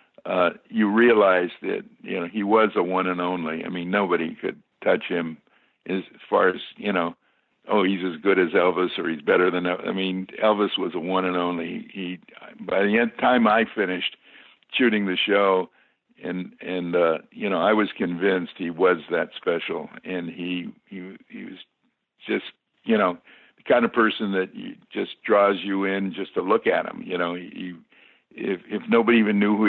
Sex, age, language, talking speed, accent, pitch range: male, 60-79, English, 195 wpm, American, 90-100 Hz